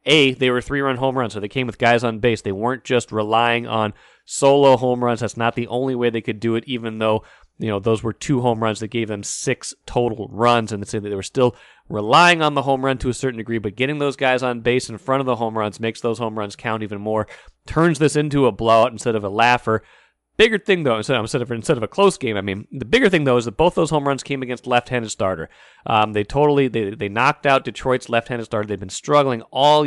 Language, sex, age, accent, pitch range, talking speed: English, male, 30-49, American, 115-135 Hz, 255 wpm